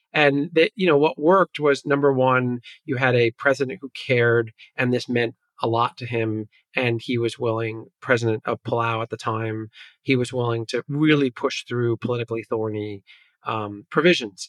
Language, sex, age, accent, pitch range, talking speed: English, male, 30-49, American, 115-130 Hz, 180 wpm